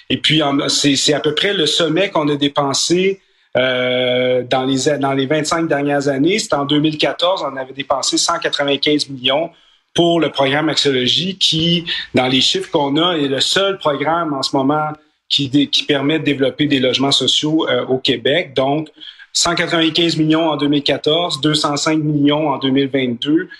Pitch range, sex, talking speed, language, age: 135-160 Hz, male, 155 wpm, French, 30-49